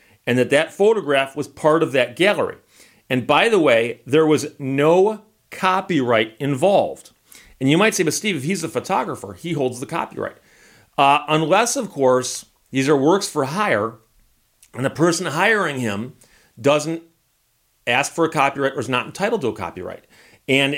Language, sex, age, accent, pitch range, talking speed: English, male, 40-59, American, 125-165 Hz, 170 wpm